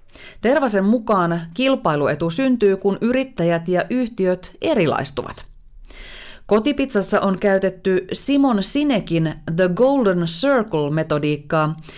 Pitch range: 180-245 Hz